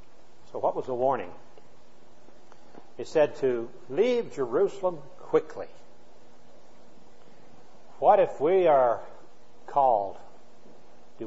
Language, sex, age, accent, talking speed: English, male, 60-79, American, 90 wpm